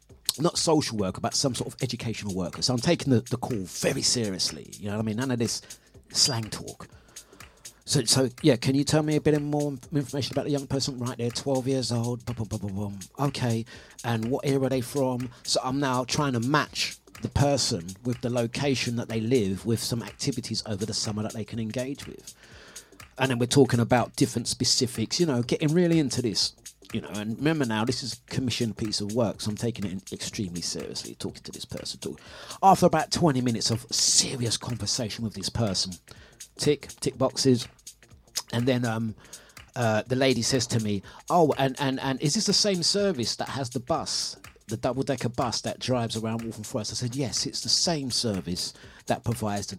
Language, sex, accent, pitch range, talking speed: English, male, British, 110-140 Hz, 200 wpm